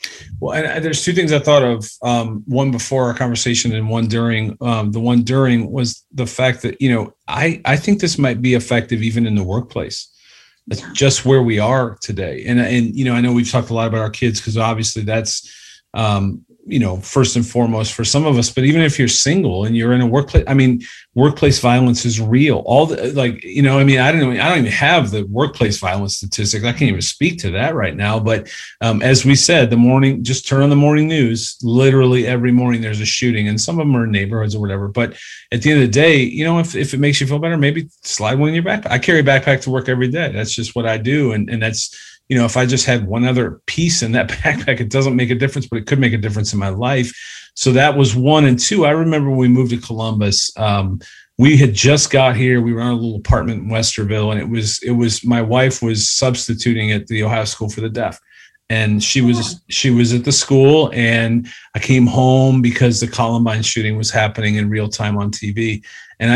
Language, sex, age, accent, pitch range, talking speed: English, male, 40-59, American, 110-135 Hz, 245 wpm